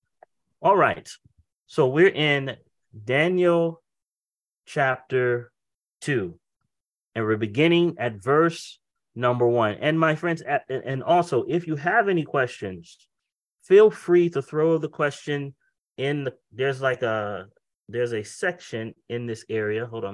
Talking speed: 130 wpm